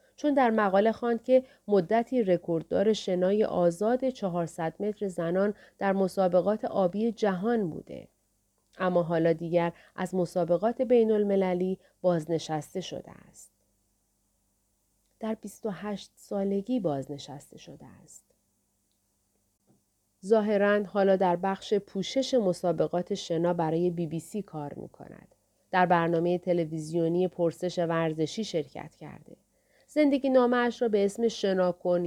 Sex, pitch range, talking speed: female, 165-210 Hz, 110 wpm